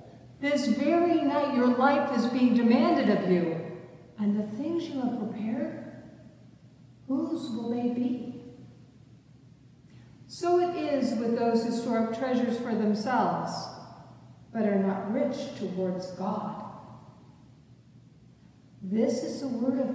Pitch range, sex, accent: 200-270 Hz, female, American